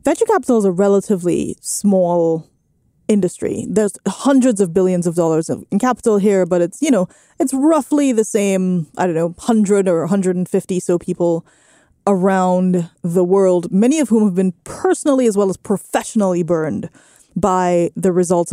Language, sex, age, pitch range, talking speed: English, female, 20-39, 180-220 Hz, 160 wpm